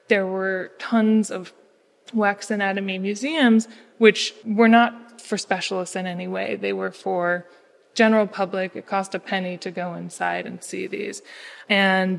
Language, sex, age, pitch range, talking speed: English, female, 20-39, 180-220 Hz, 155 wpm